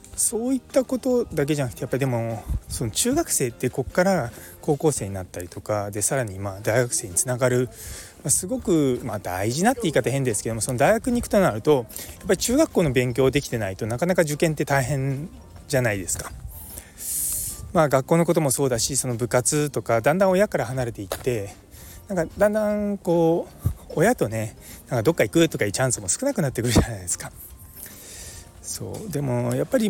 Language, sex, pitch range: Japanese, male, 100-160 Hz